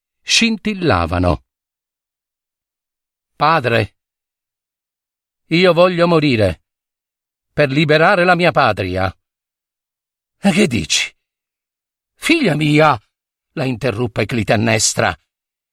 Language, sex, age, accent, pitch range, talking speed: Italian, male, 50-69, native, 115-185 Hz, 70 wpm